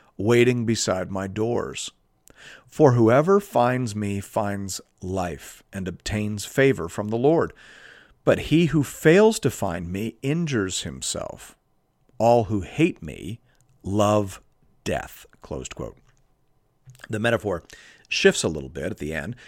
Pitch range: 95-135 Hz